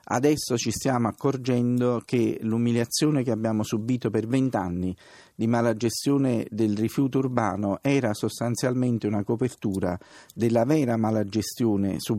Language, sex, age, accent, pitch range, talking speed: Italian, male, 50-69, native, 115-150 Hz, 125 wpm